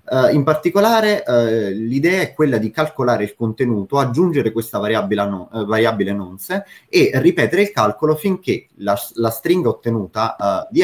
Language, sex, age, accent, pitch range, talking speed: Italian, male, 30-49, native, 105-140 Hz, 135 wpm